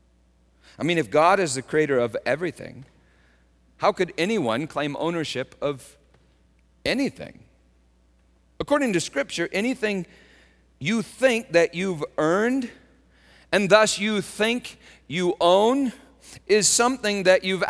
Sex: male